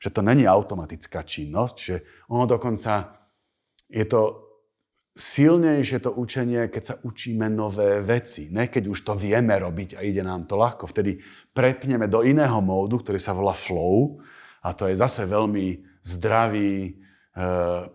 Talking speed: 145 wpm